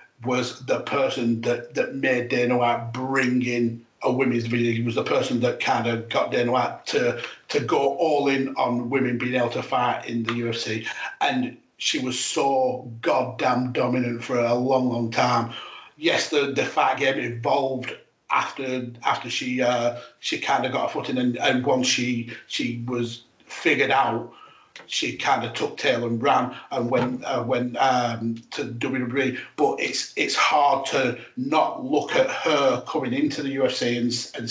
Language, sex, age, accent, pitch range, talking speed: English, male, 40-59, British, 120-135 Hz, 175 wpm